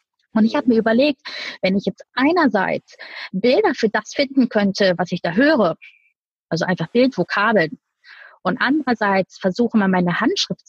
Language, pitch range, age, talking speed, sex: German, 200-260 Hz, 30-49, 150 wpm, female